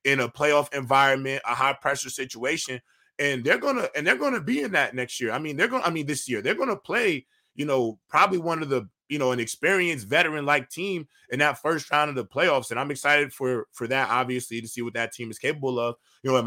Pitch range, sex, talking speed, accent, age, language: 130-160 Hz, male, 245 wpm, American, 20-39, English